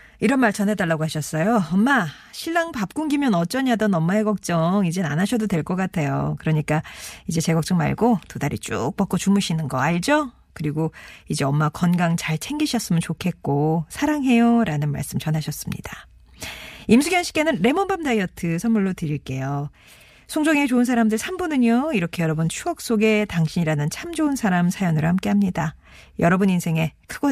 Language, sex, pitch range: Korean, female, 160-235 Hz